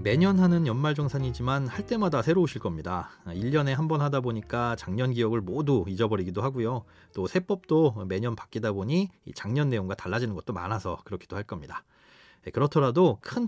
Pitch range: 115-175 Hz